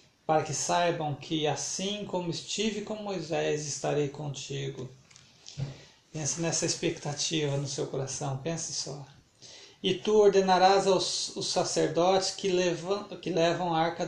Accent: Brazilian